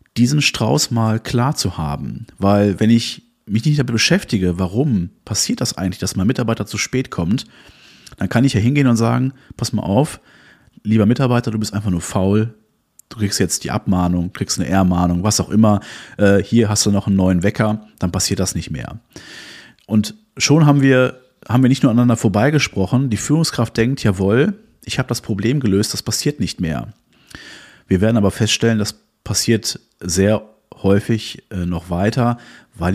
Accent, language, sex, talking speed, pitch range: German, German, male, 175 wpm, 95-120 Hz